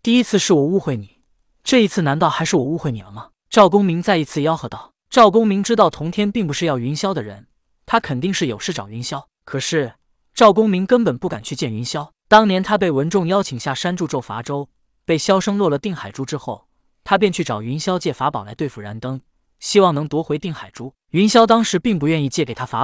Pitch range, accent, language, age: 135-195 Hz, native, Chinese, 20-39